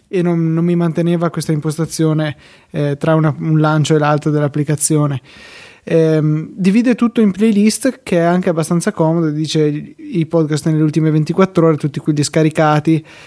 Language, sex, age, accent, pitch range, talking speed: Italian, male, 20-39, native, 150-170 Hz, 160 wpm